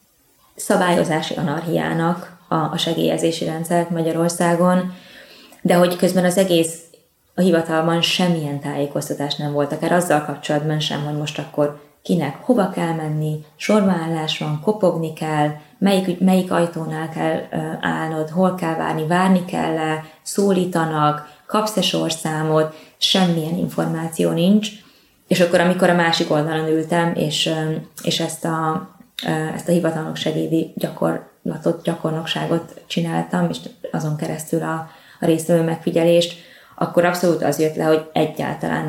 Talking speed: 125 wpm